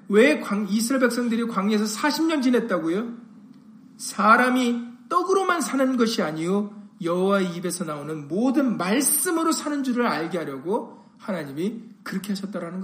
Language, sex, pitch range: Korean, male, 200-245 Hz